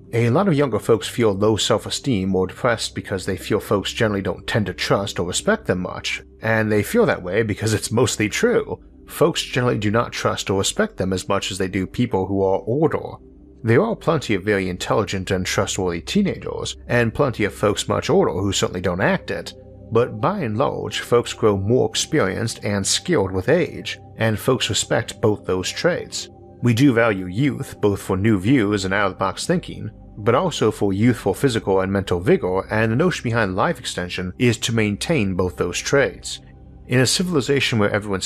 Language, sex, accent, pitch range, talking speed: English, male, American, 95-120 Hz, 200 wpm